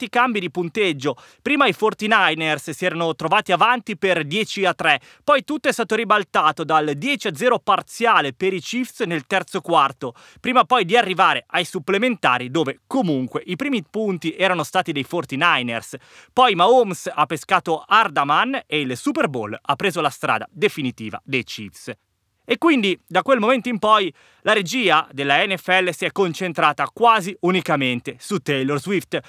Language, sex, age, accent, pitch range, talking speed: Italian, male, 20-39, native, 155-220 Hz, 160 wpm